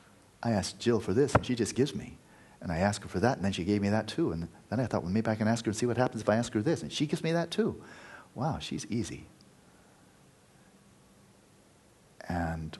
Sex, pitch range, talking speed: male, 105-130 Hz, 245 wpm